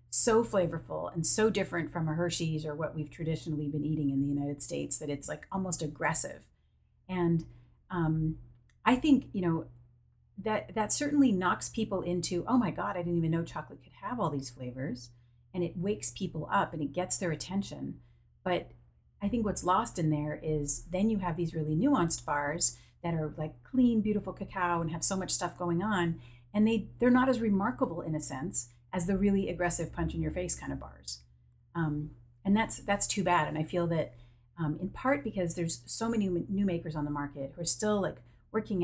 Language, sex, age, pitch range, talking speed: English, female, 40-59, 145-185 Hz, 205 wpm